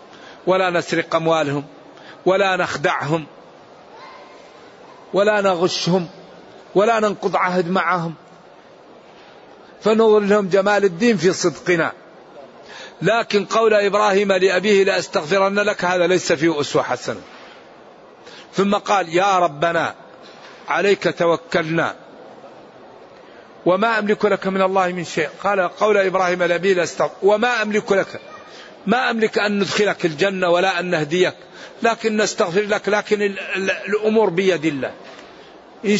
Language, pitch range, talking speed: Arabic, 175-205 Hz, 110 wpm